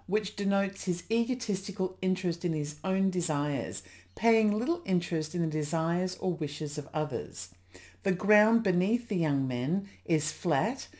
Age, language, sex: 50-69, English, female